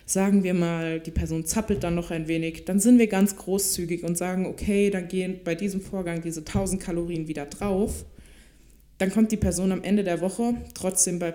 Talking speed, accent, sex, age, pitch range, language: 200 wpm, German, female, 20-39, 165-190 Hz, German